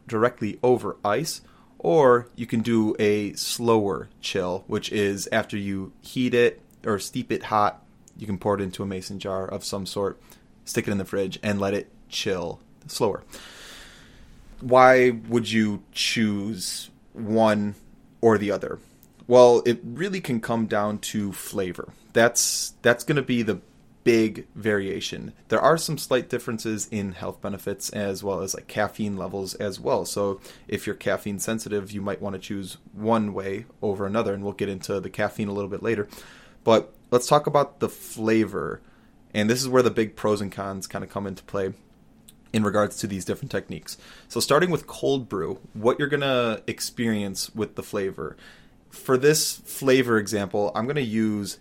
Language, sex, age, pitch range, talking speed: English, male, 30-49, 100-120 Hz, 175 wpm